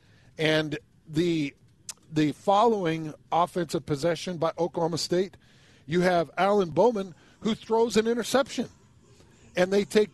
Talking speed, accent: 120 wpm, American